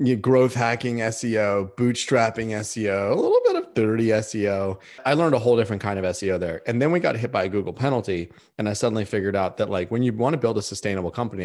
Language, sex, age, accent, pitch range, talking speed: English, male, 30-49, American, 100-130 Hz, 240 wpm